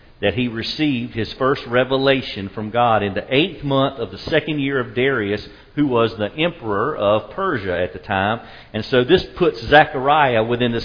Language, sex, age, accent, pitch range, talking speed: English, male, 50-69, American, 115-155 Hz, 190 wpm